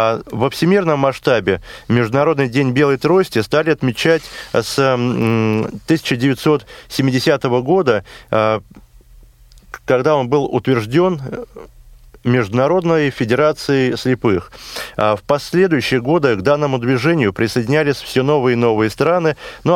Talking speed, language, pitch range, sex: 100 wpm, Russian, 115-145 Hz, male